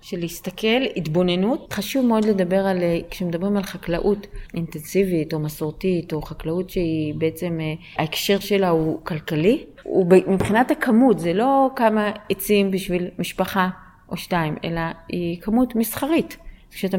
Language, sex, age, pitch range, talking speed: Hebrew, female, 30-49, 170-205 Hz, 130 wpm